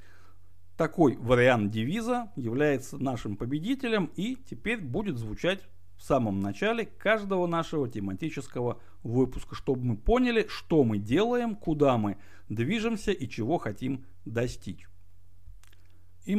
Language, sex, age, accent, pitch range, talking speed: Russian, male, 60-79, native, 115-185 Hz, 115 wpm